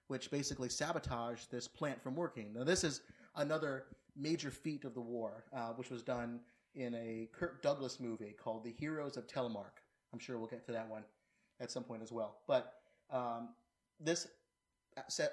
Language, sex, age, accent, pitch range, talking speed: English, male, 30-49, American, 120-140 Hz, 175 wpm